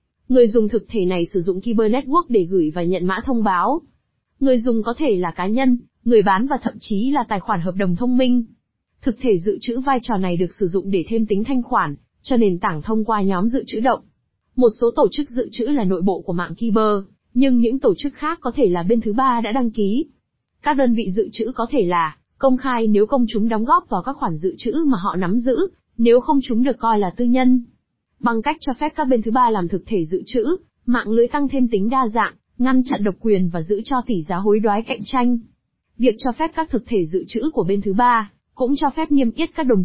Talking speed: 255 wpm